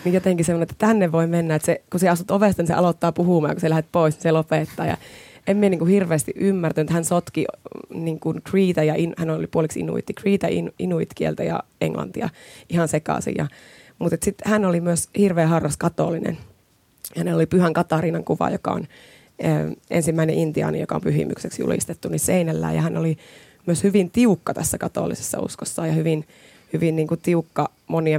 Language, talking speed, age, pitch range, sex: Finnish, 185 wpm, 20-39, 155-185 Hz, female